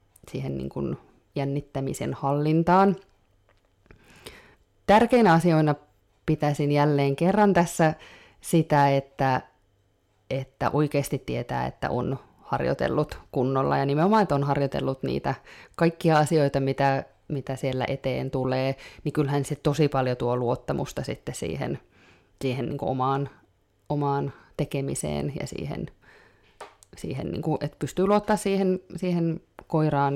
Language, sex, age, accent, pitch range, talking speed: Finnish, female, 20-39, native, 130-160 Hz, 105 wpm